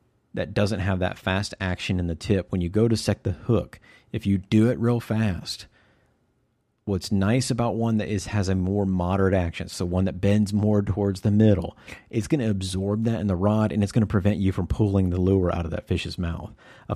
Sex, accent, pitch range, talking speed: male, American, 95-110 Hz, 230 wpm